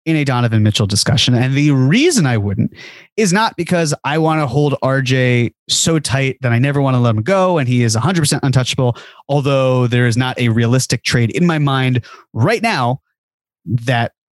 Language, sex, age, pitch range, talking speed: English, male, 20-39, 120-145 Hz, 200 wpm